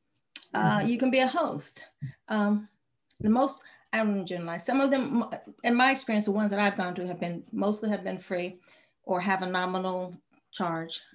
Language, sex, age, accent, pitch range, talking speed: English, female, 40-59, American, 195-245 Hz, 190 wpm